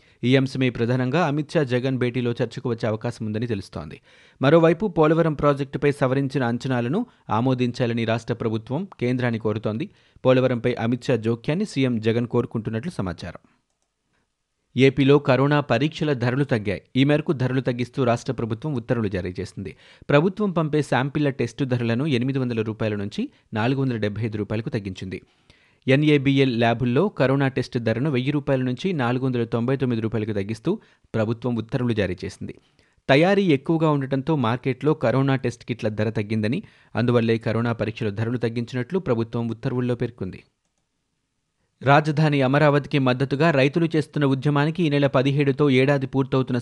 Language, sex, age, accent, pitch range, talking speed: Telugu, male, 30-49, native, 115-140 Hz, 125 wpm